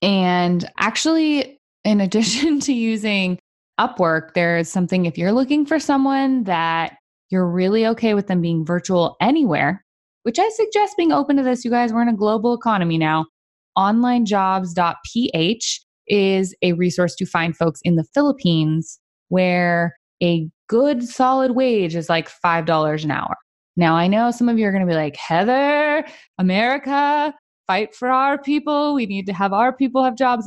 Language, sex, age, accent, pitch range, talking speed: English, female, 20-39, American, 170-240 Hz, 165 wpm